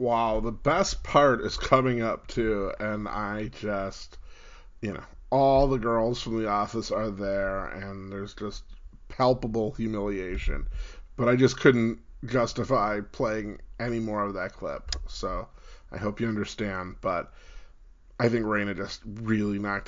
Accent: American